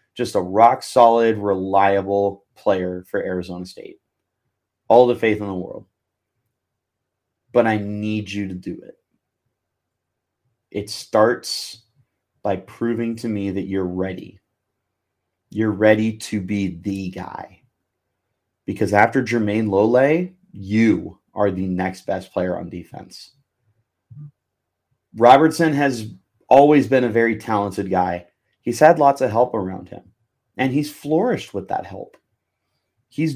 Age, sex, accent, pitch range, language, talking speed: 30-49, male, American, 95-125 Hz, English, 130 wpm